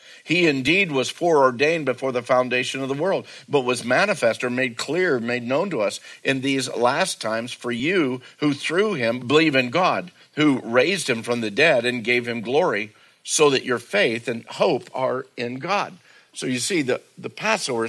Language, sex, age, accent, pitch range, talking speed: English, male, 50-69, American, 120-135 Hz, 190 wpm